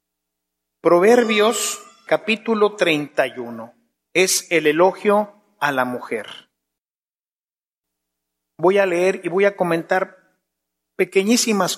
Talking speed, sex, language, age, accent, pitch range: 85 wpm, male, English, 40-59, Mexican, 135-180 Hz